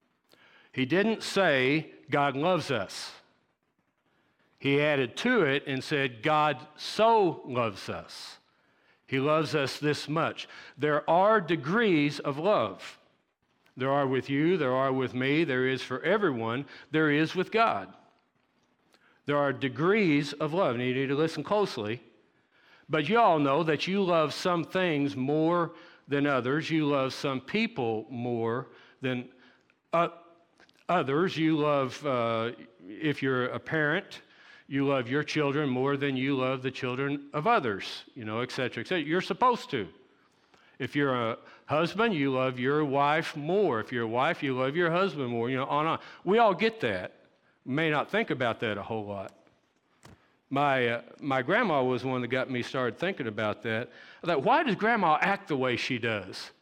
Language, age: English, 60-79